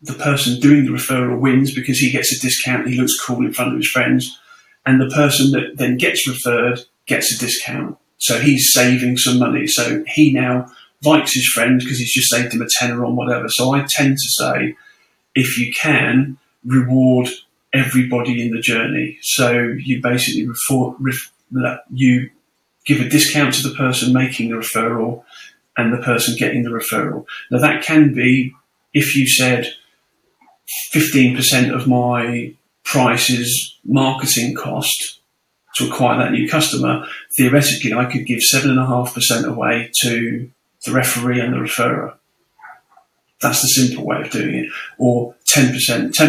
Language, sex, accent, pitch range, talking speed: English, male, British, 120-135 Hz, 155 wpm